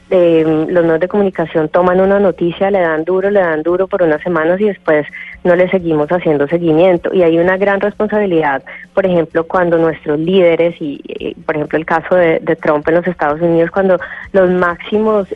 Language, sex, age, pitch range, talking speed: Spanish, female, 20-39, 160-185 Hz, 195 wpm